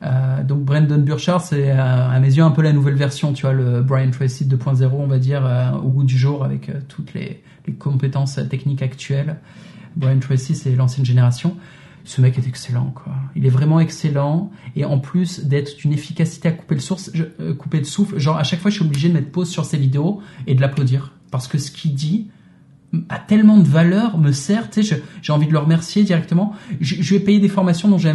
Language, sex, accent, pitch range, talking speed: French, male, French, 135-170 Hz, 230 wpm